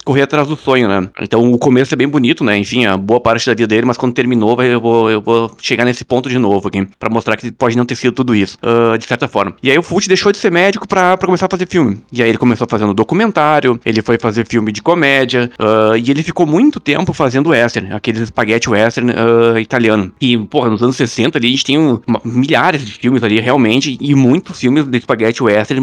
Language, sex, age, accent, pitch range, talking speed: Portuguese, male, 20-39, Brazilian, 115-155 Hz, 250 wpm